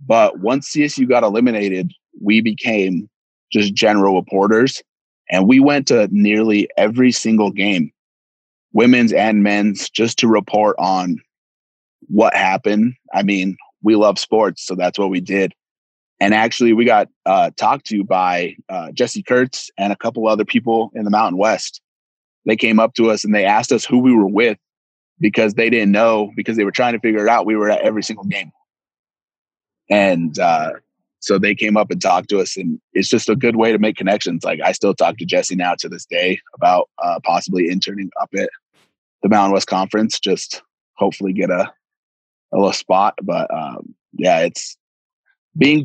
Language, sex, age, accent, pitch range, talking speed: English, male, 30-49, American, 95-115 Hz, 180 wpm